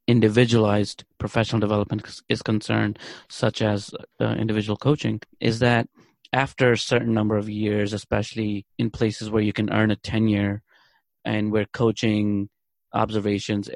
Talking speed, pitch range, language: 135 wpm, 105-115 Hz, English